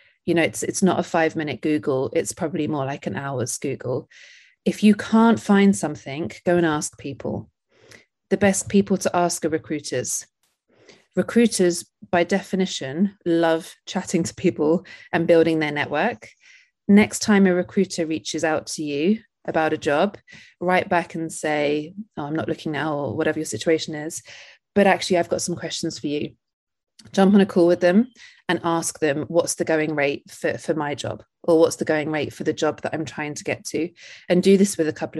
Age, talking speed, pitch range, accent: 30-49, 195 wpm, 150-190 Hz, British